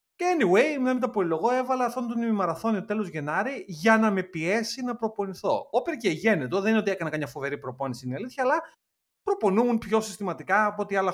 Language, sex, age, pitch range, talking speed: Greek, male, 30-49, 135-220 Hz, 195 wpm